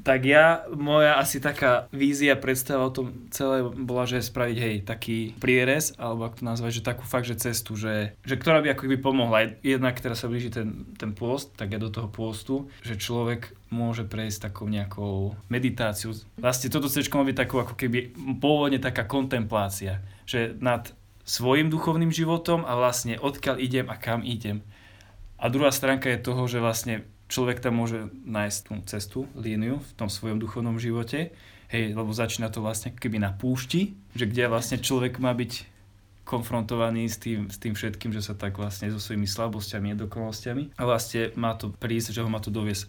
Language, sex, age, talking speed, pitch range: Slovak, male, 20-39, 185 wpm, 105-130 Hz